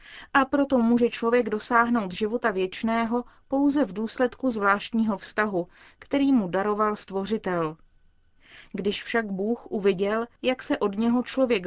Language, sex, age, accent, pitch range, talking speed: Czech, female, 20-39, native, 200-245 Hz, 130 wpm